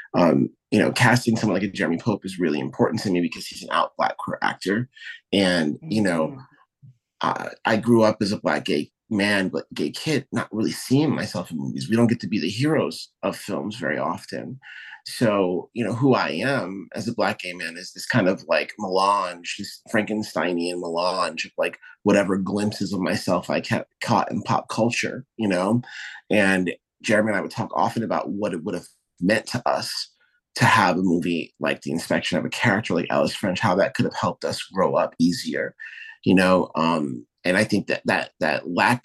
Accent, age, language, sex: American, 30-49, English, male